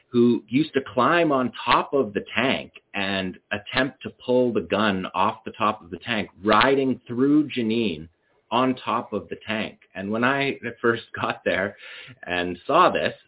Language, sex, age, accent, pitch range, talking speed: English, male, 30-49, American, 100-130 Hz, 175 wpm